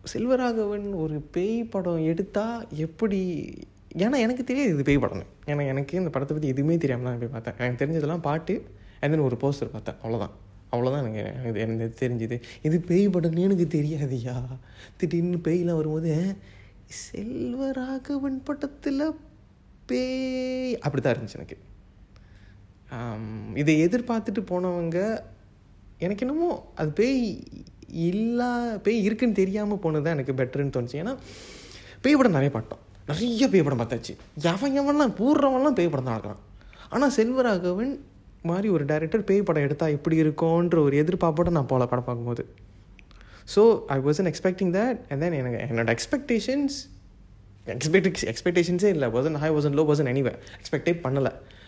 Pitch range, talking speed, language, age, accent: 120-205 Hz, 135 wpm, Tamil, 20-39, native